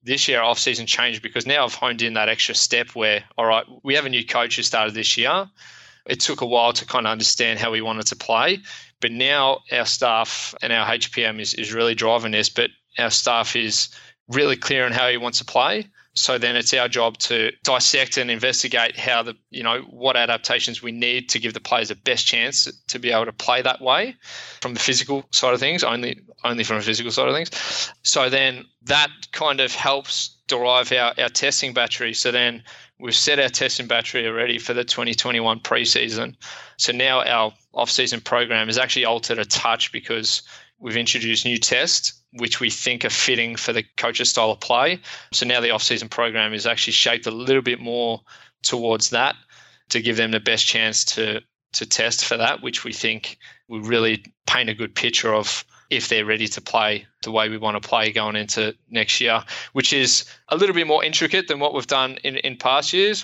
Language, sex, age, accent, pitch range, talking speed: English, male, 20-39, Australian, 115-125 Hz, 210 wpm